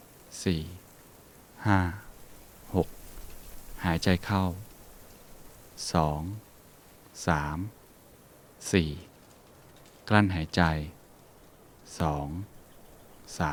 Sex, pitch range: male, 80-95 Hz